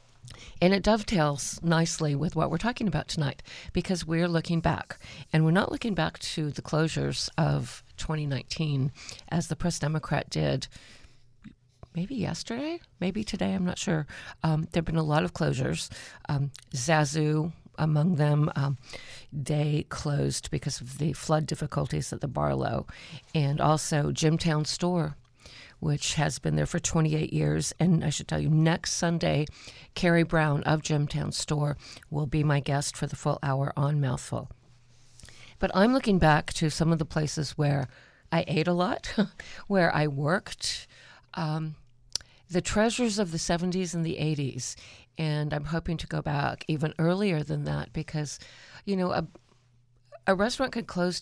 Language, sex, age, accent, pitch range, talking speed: English, female, 50-69, American, 135-170 Hz, 160 wpm